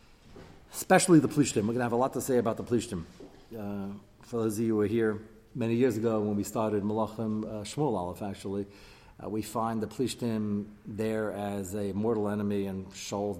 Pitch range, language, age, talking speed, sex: 105-125 Hz, English, 40-59, 200 wpm, male